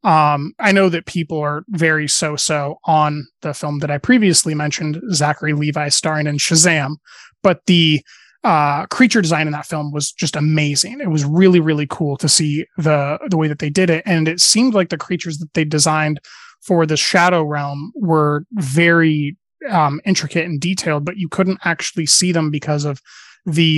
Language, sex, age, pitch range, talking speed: English, male, 20-39, 150-175 Hz, 185 wpm